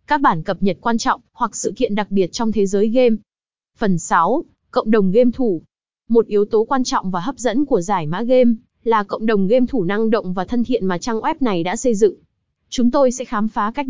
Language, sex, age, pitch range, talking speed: Vietnamese, female, 20-39, 200-250 Hz, 240 wpm